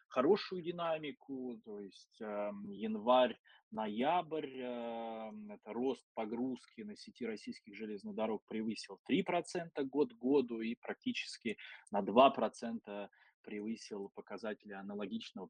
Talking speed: 95 wpm